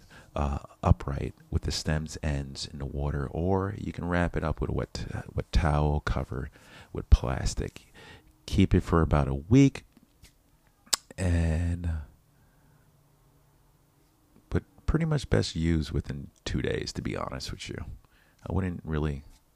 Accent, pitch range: American, 75-95 Hz